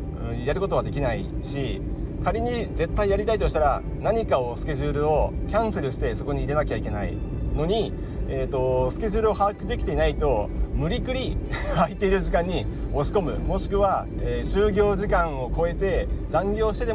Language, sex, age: Japanese, male, 40-59